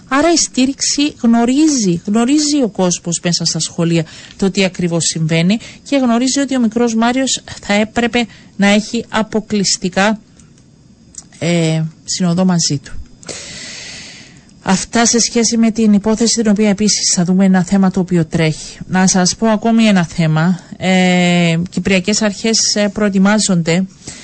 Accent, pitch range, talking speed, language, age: native, 185-225 Hz, 130 wpm, Greek, 40-59